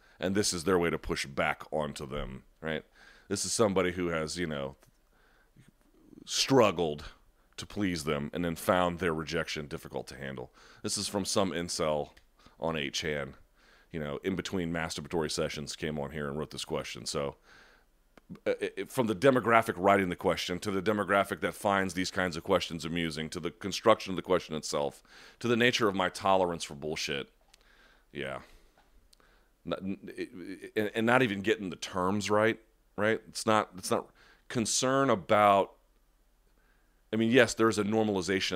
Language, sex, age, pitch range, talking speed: English, male, 30-49, 80-100 Hz, 165 wpm